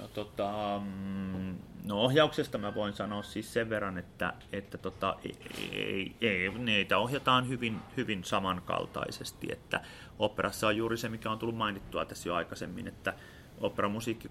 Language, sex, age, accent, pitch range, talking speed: Finnish, male, 30-49, native, 90-110 Hz, 145 wpm